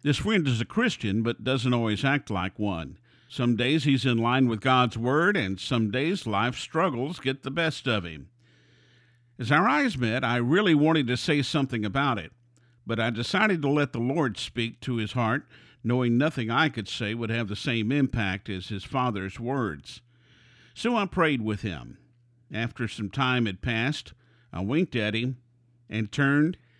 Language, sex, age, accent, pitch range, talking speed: English, male, 50-69, American, 115-140 Hz, 185 wpm